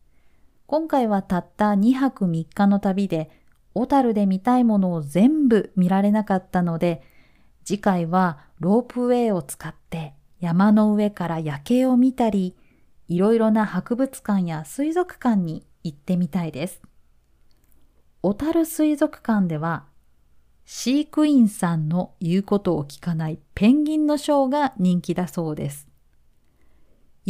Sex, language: female, Japanese